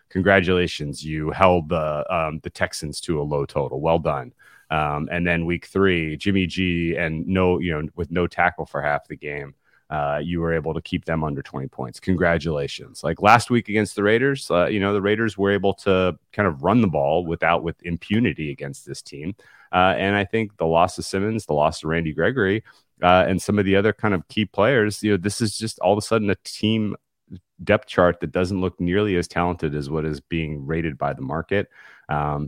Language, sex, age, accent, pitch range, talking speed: English, male, 30-49, American, 80-95 Hz, 220 wpm